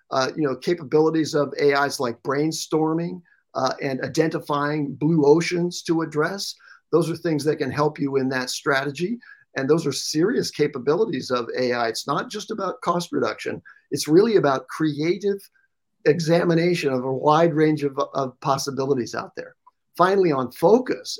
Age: 50-69